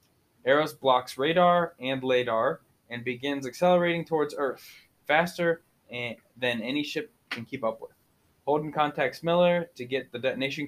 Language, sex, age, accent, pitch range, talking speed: English, male, 20-39, American, 125-150 Hz, 140 wpm